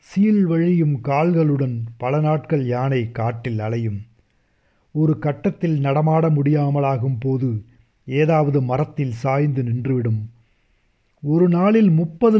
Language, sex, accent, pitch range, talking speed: Tamil, male, native, 120-160 Hz, 90 wpm